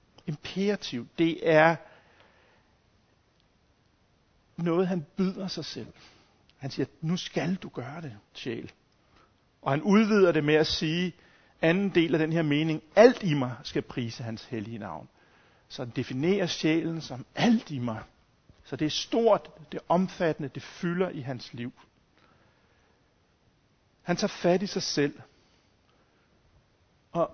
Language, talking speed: Danish, 140 wpm